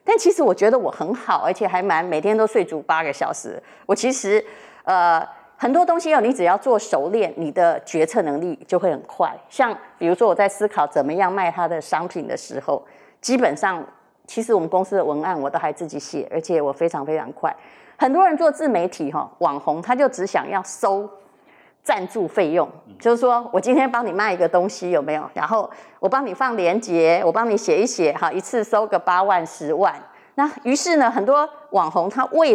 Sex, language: female, Chinese